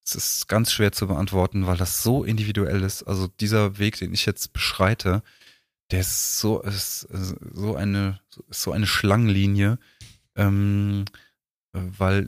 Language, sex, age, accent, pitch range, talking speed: German, male, 30-49, German, 95-105 Hz, 140 wpm